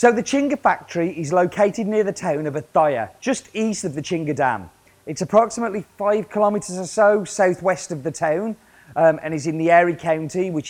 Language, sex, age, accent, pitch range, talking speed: English, male, 30-49, British, 150-195 Hz, 195 wpm